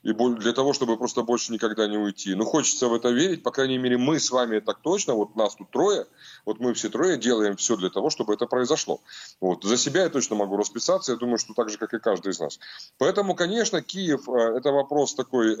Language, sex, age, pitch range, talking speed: Russian, male, 30-49, 115-155 Hz, 230 wpm